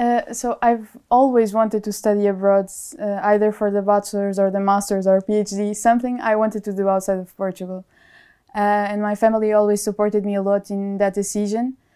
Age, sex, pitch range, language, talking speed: 20-39, female, 195-215 Hz, German, 190 wpm